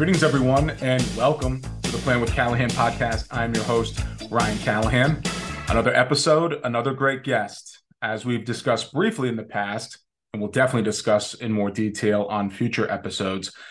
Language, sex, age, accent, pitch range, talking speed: English, male, 30-49, American, 105-120 Hz, 160 wpm